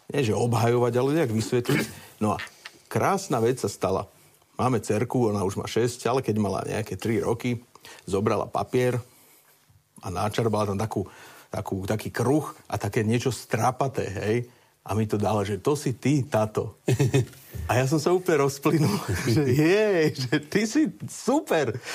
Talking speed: 160 wpm